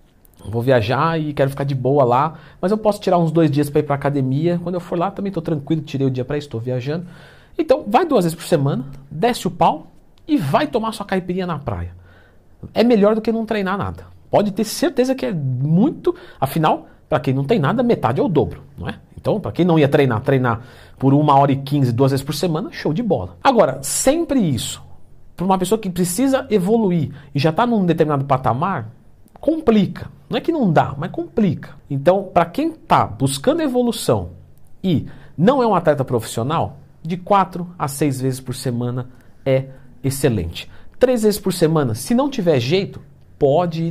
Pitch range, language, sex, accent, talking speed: 135-205 Hz, Portuguese, male, Brazilian, 200 wpm